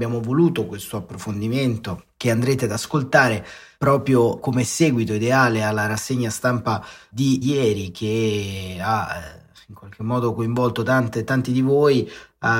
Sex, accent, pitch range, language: male, native, 110-125 Hz, Italian